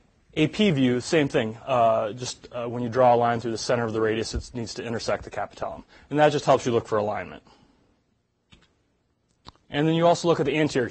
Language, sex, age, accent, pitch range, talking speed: English, male, 30-49, American, 120-160 Hz, 220 wpm